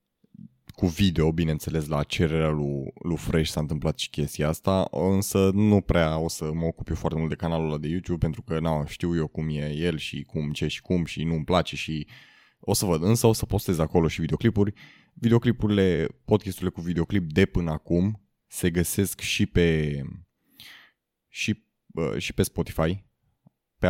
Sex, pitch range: male, 80-95 Hz